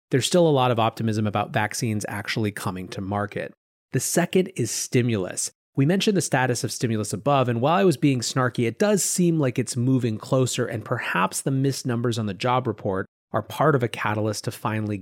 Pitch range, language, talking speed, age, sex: 110-155 Hz, English, 210 wpm, 30-49, male